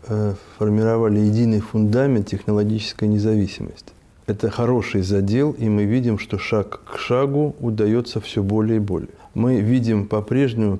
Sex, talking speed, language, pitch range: male, 130 wpm, Russian, 105-120 Hz